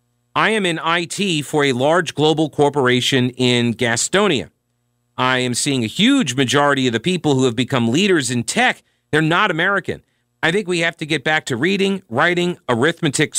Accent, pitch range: American, 120-170 Hz